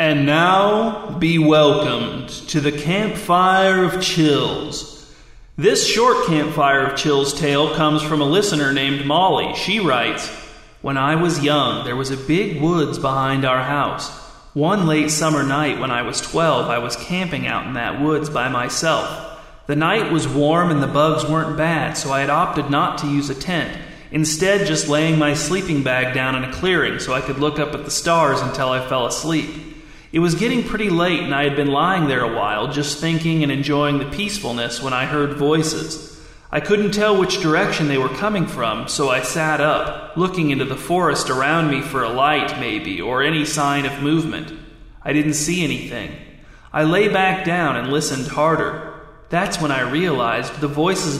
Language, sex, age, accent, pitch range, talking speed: English, male, 30-49, American, 140-165 Hz, 190 wpm